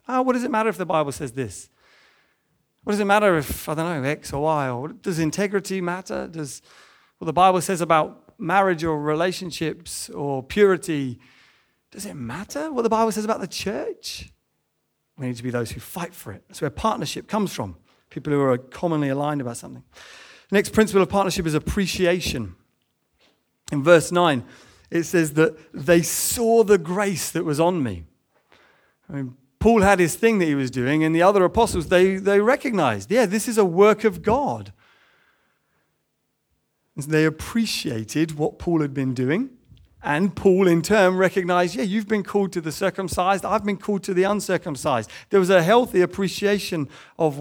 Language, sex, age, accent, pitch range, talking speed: English, male, 30-49, British, 145-200 Hz, 180 wpm